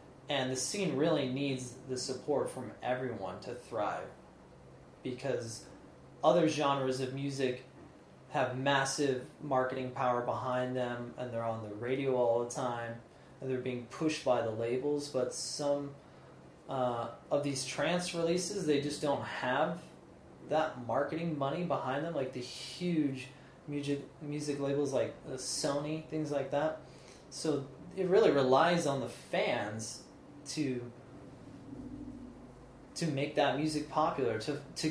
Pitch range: 125-145 Hz